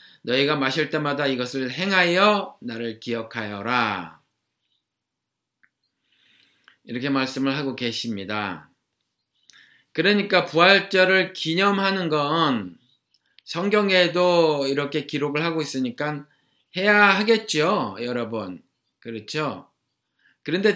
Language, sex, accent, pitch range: Korean, male, native, 125-180 Hz